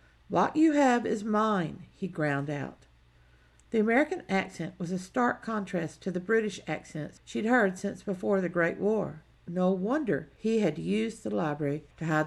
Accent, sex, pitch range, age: American, female, 145-210 Hz, 50-69